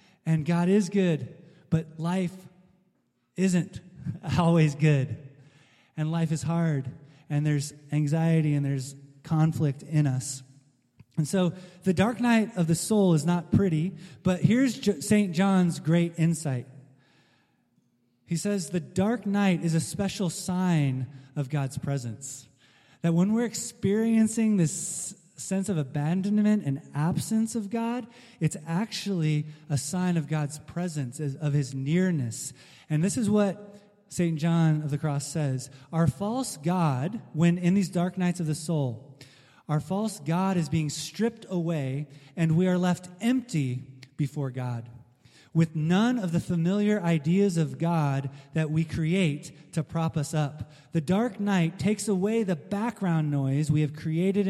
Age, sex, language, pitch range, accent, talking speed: 20-39, male, English, 145-185 Hz, American, 145 wpm